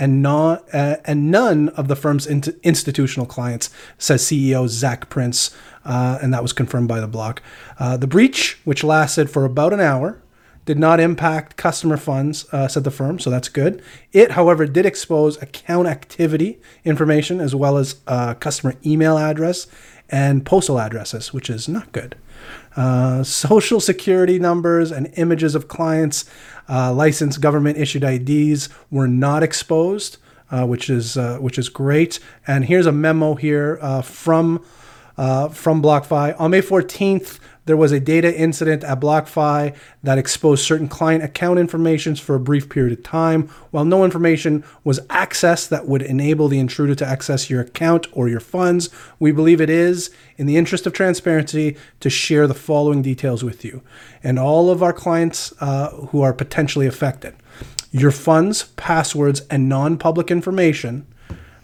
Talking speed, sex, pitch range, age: 160 wpm, male, 135-165 Hz, 30-49